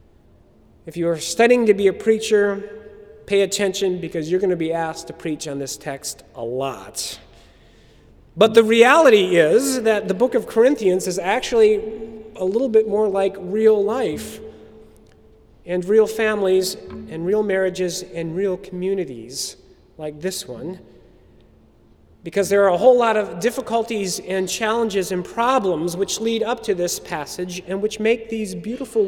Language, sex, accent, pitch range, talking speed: English, male, American, 180-230 Hz, 155 wpm